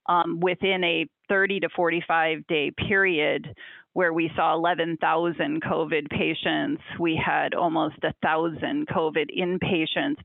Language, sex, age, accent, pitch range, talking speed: English, female, 30-49, American, 170-205 Hz, 130 wpm